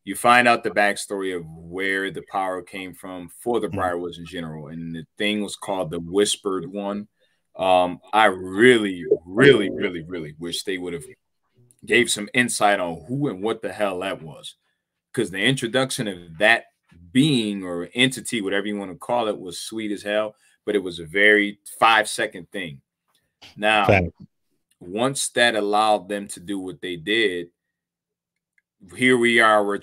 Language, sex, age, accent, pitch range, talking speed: English, male, 30-49, American, 90-110 Hz, 170 wpm